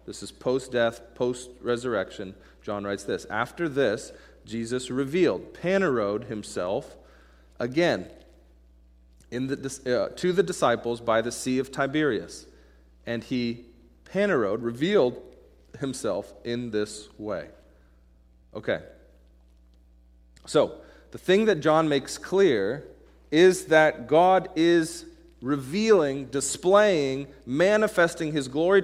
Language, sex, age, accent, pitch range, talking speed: English, male, 40-59, American, 105-170 Hz, 100 wpm